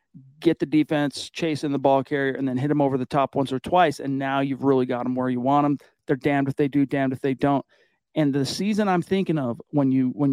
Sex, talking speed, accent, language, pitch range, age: male, 265 wpm, American, English, 135-155 Hz, 40-59